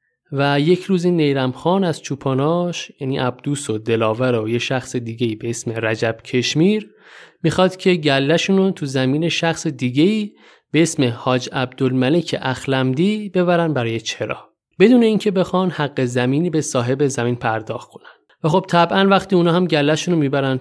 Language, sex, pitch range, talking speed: Persian, male, 130-175 Hz, 155 wpm